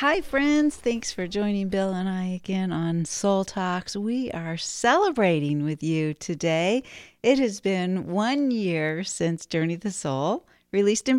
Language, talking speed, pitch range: English, 160 wpm, 170-225 Hz